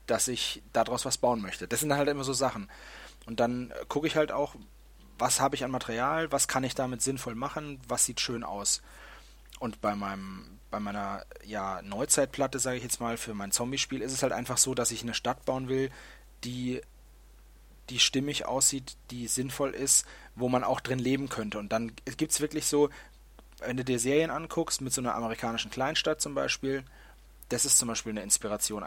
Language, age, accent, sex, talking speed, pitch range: German, 30-49, German, male, 200 wpm, 115-140 Hz